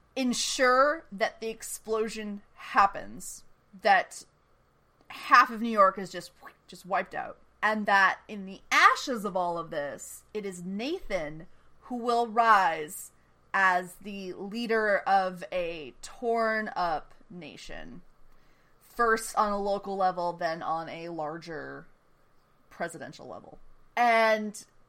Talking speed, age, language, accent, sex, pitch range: 120 wpm, 30-49, English, American, female, 190-235 Hz